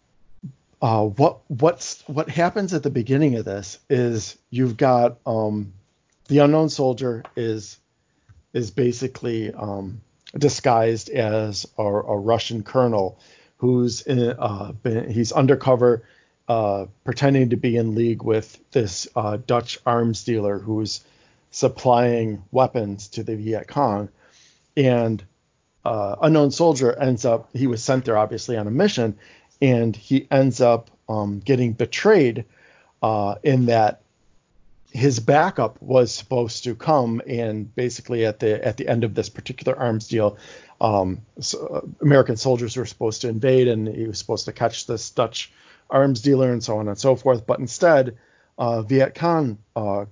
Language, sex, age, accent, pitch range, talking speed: English, male, 40-59, American, 110-130 Hz, 145 wpm